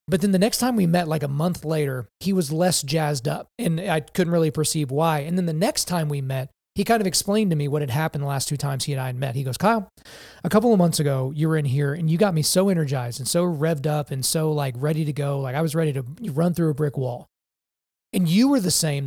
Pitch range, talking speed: 150-185 Hz, 285 wpm